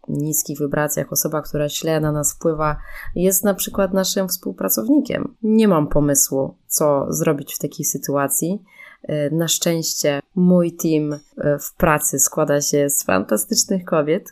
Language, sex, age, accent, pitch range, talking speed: Polish, female, 20-39, native, 150-185 Hz, 135 wpm